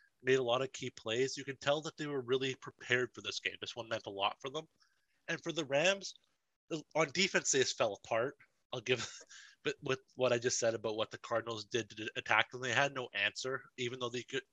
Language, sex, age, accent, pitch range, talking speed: English, male, 20-39, American, 115-145 Hz, 240 wpm